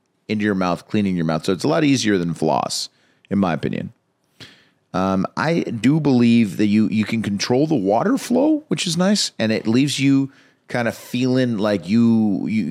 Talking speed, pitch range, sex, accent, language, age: 195 wpm, 95-130 Hz, male, American, English, 30-49